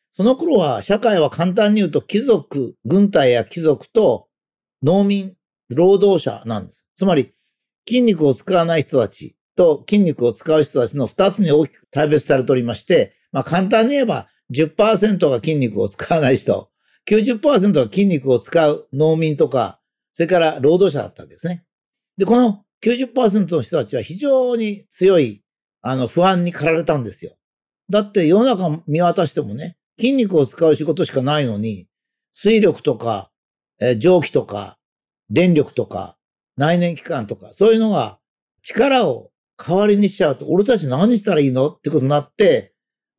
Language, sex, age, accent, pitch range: Japanese, male, 50-69, native, 145-210 Hz